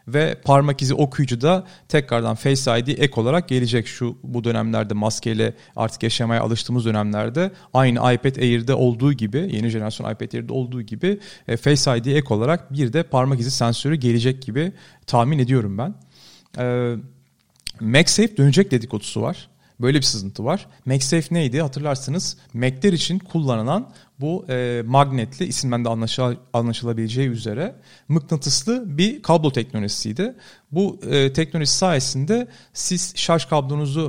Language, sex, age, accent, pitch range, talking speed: Turkish, male, 40-59, native, 120-160 Hz, 135 wpm